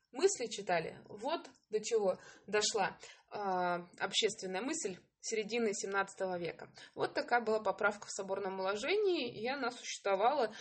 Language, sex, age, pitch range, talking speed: English, female, 20-39, 205-290 Hz, 120 wpm